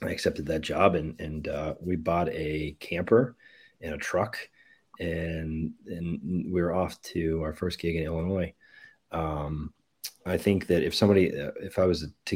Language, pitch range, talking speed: English, 80-90 Hz, 170 wpm